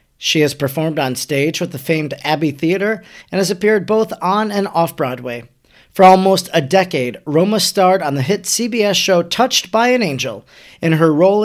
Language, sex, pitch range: English, male, 155-205 Hz